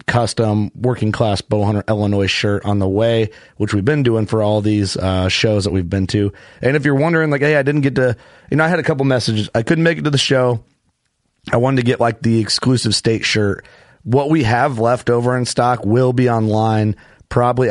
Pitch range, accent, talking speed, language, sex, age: 105-130 Hz, American, 220 wpm, English, male, 30-49